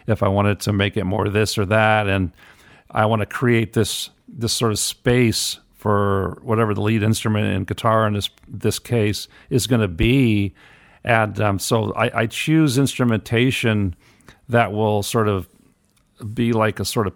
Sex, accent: male, American